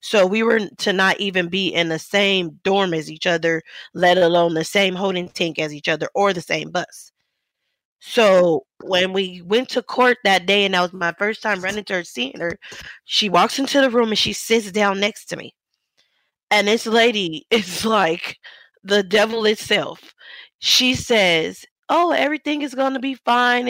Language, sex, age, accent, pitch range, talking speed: English, female, 20-39, American, 185-240 Hz, 190 wpm